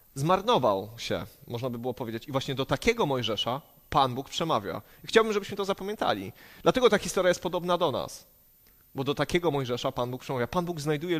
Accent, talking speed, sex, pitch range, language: native, 190 wpm, male, 130-170 Hz, Polish